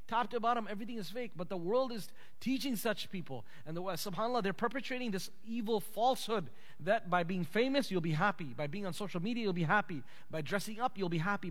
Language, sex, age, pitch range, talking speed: English, male, 30-49, 175-240 Hz, 215 wpm